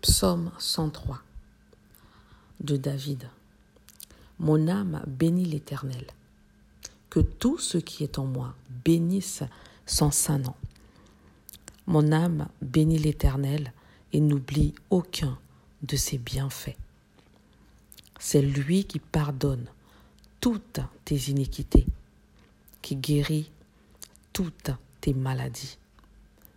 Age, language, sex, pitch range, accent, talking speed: 50-69, French, female, 110-155 Hz, French, 95 wpm